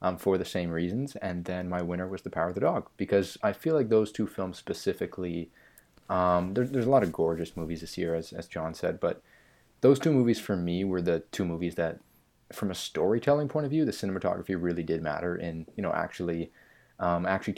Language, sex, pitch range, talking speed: English, male, 85-100 Hz, 220 wpm